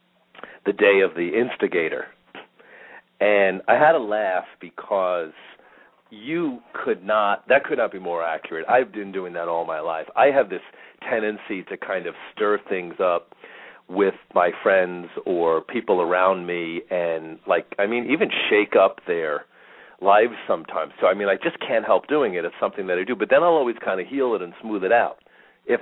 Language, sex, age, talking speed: English, male, 40-59, 190 wpm